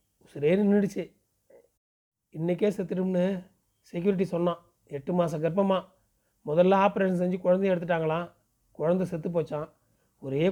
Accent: native